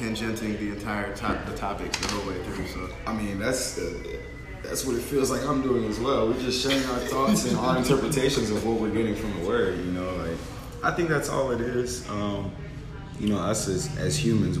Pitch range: 85-115 Hz